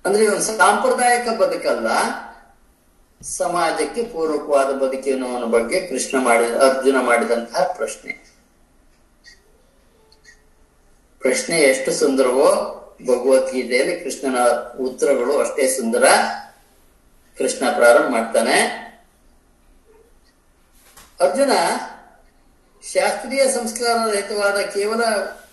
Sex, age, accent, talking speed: male, 50-69, native, 65 wpm